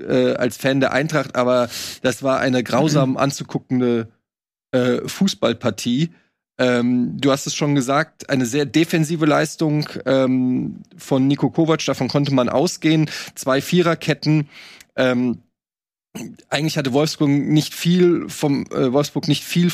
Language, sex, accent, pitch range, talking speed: German, male, German, 130-155 Hz, 130 wpm